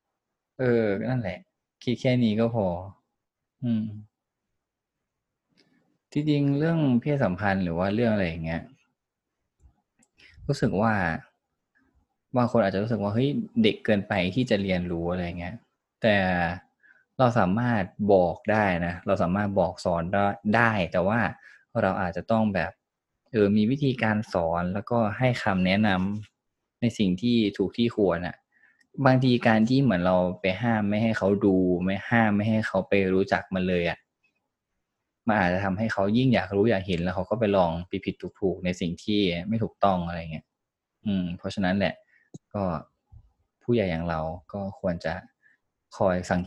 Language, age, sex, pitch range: Thai, 20-39, male, 90-115 Hz